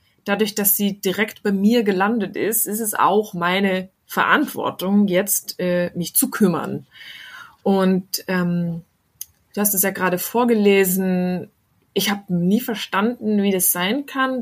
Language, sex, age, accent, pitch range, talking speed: German, female, 20-39, German, 190-225 Hz, 135 wpm